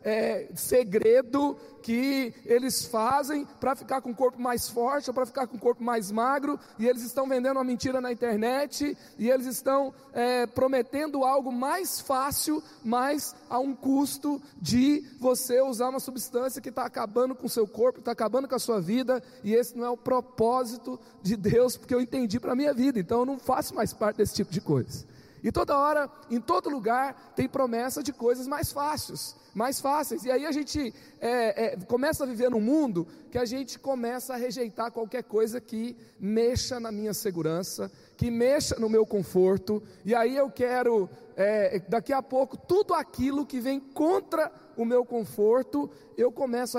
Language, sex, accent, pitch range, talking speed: Portuguese, male, Brazilian, 230-270 Hz, 180 wpm